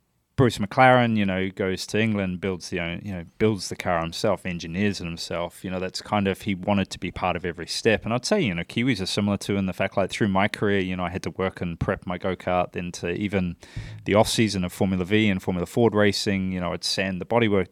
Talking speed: 260 wpm